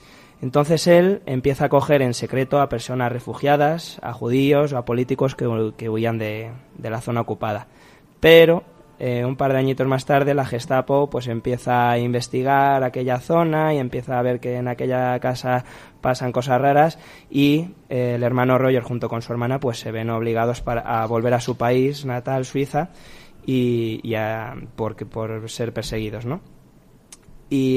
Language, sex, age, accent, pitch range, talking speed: Spanish, male, 20-39, Spanish, 120-145 Hz, 175 wpm